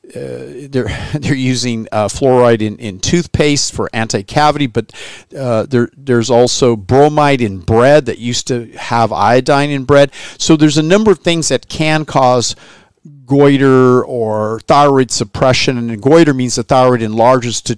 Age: 50-69